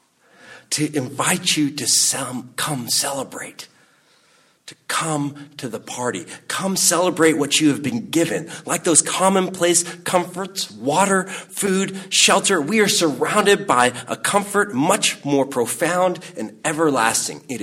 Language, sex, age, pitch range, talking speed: English, male, 40-59, 115-175 Hz, 125 wpm